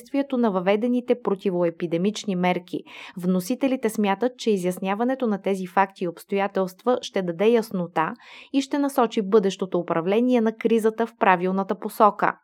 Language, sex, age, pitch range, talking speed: Bulgarian, female, 20-39, 185-235 Hz, 125 wpm